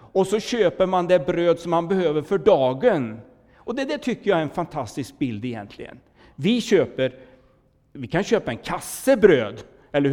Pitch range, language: 140-205 Hz, Swedish